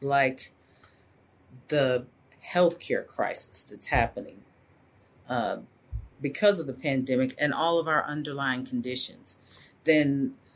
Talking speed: 100 wpm